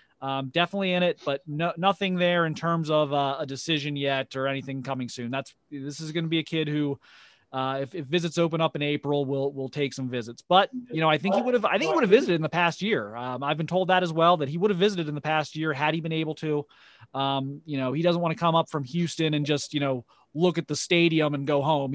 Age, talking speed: 30-49, 280 wpm